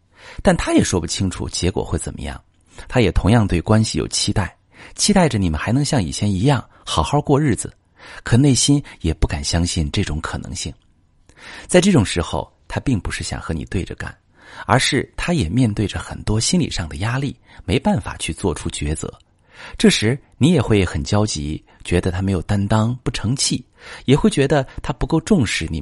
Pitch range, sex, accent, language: 90-120 Hz, male, native, Chinese